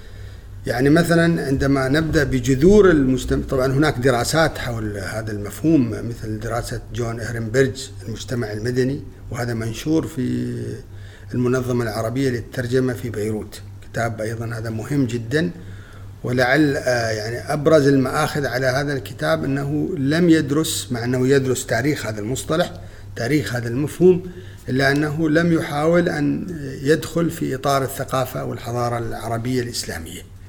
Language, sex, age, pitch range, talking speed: Arabic, male, 50-69, 110-155 Hz, 120 wpm